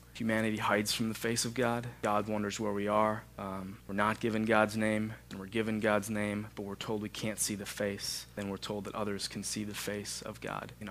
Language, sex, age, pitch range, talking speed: English, male, 20-39, 100-110 Hz, 235 wpm